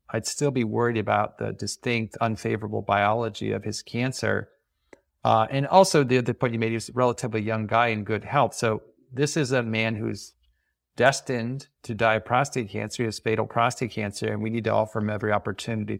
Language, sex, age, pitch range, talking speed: English, male, 40-59, 110-125 Hz, 205 wpm